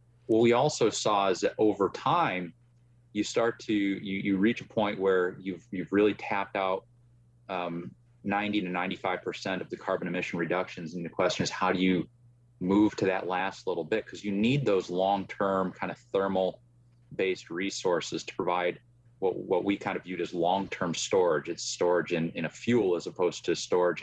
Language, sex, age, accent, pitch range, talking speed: English, male, 30-49, American, 85-120 Hz, 185 wpm